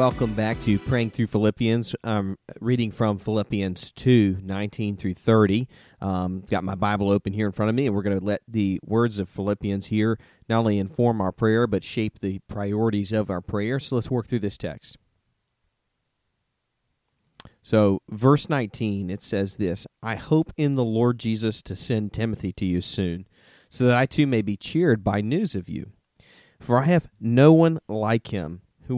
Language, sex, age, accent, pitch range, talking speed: English, male, 40-59, American, 100-120 Hz, 185 wpm